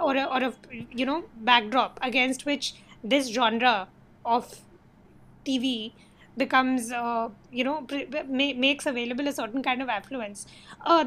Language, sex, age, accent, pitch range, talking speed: English, female, 20-39, Indian, 235-280 Hz, 145 wpm